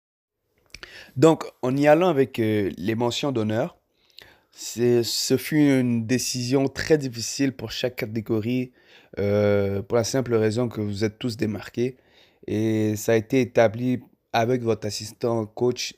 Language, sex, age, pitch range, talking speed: French, male, 20-39, 110-130 Hz, 145 wpm